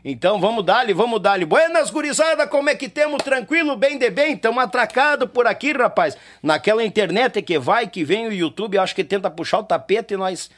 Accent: Brazilian